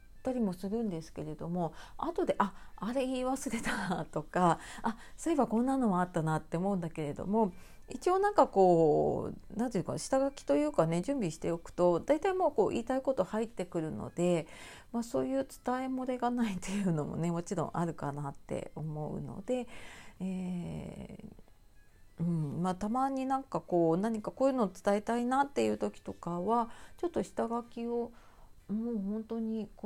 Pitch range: 165-240 Hz